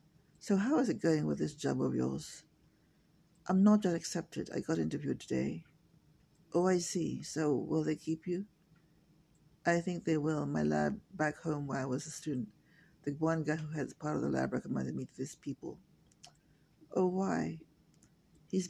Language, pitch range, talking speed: English, 150-165 Hz, 180 wpm